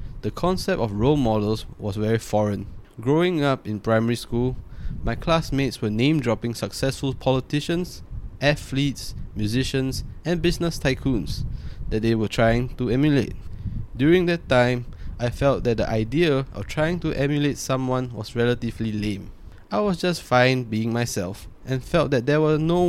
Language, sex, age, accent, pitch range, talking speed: English, male, 20-39, Malaysian, 105-135 Hz, 150 wpm